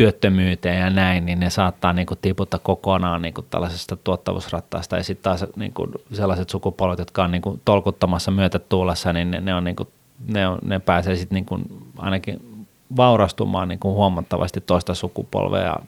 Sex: male